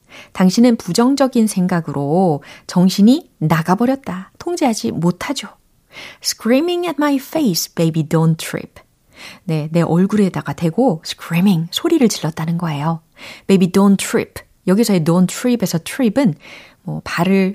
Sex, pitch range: female, 165-230 Hz